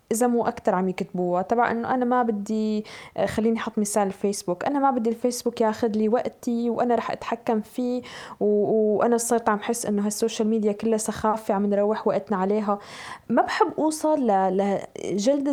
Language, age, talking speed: Arabic, 20-39, 170 wpm